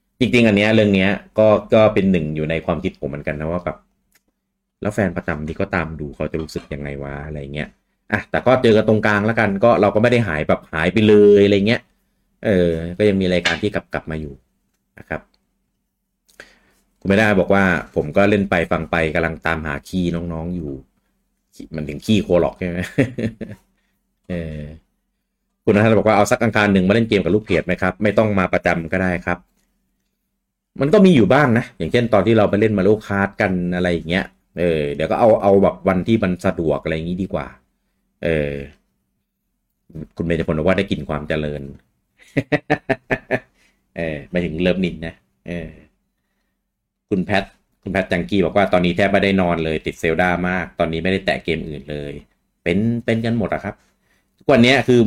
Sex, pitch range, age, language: male, 80-105 Hz, 30-49, Thai